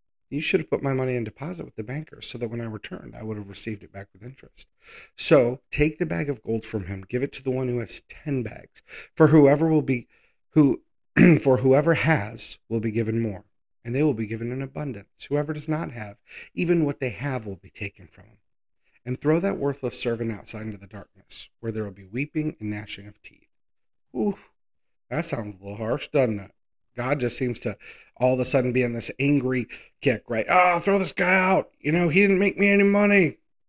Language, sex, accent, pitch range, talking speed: English, male, American, 110-165 Hz, 225 wpm